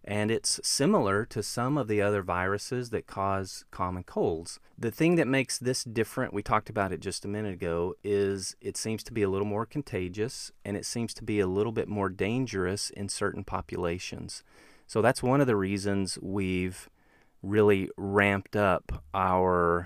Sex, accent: male, American